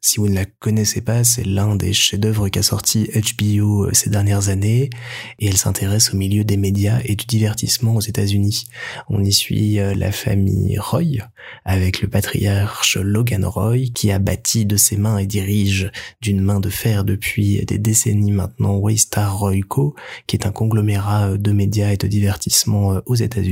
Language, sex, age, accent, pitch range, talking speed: French, male, 20-39, French, 100-120 Hz, 180 wpm